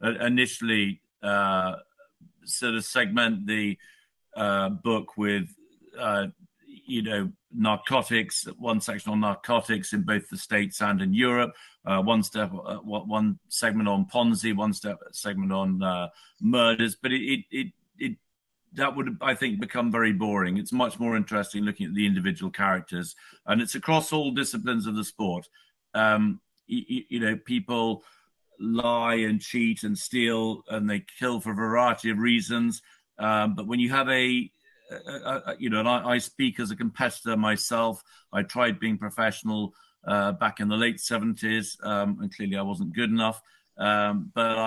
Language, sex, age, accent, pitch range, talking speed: English, male, 50-69, British, 105-130 Hz, 165 wpm